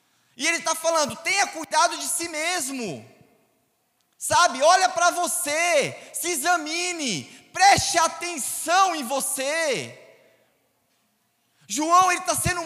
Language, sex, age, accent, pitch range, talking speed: Portuguese, male, 20-39, Brazilian, 265-325 Hz, 110 wpm